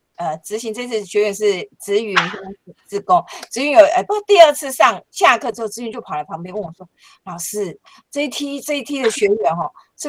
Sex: female